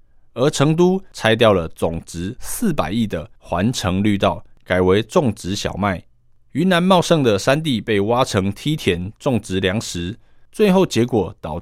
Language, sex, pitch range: Chinese, male, 100-140 Hz